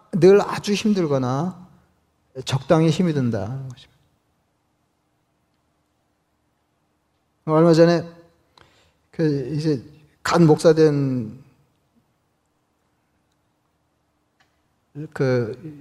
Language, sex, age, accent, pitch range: Korean, male, 40-59, native, 105-155 Hz